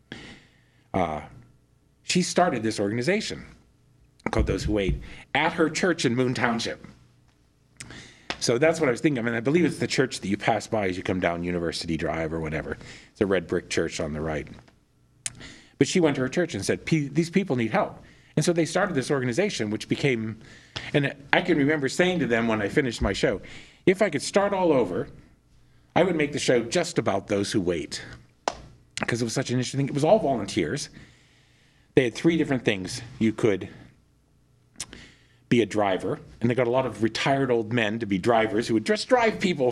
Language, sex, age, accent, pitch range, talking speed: English, male, 50-69, American, 105-145 Hz, 200 wpm